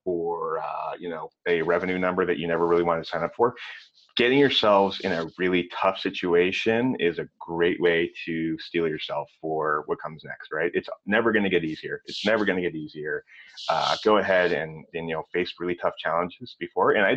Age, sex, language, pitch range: 30-49, male, English, 85-100 Hz